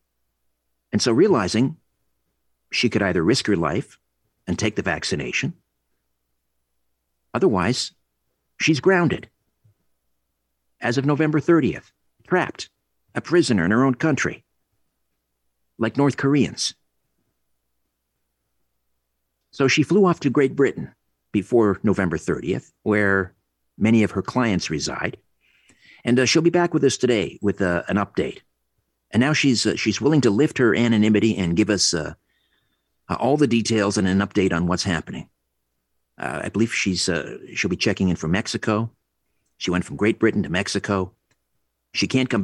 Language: English